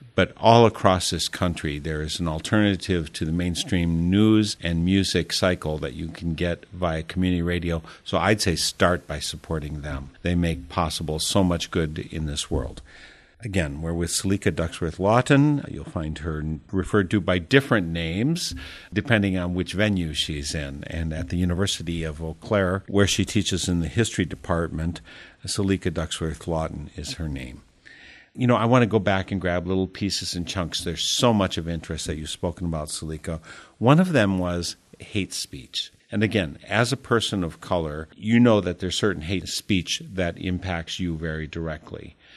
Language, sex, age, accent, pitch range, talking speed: English, male, 50-69, American, 80-100 Hz, 180 wpm